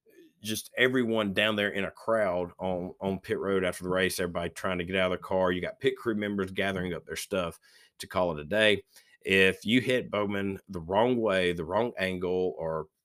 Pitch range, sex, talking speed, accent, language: 90-110 Hz, male, 215 wpm, American, English